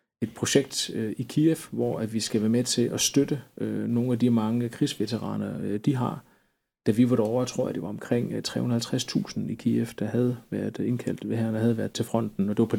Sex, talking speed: male, 215 wpm